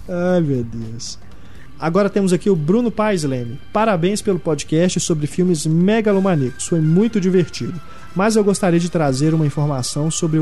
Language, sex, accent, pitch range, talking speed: Portuguese, male, Brazilian, 140-180 Hz, 155 wpm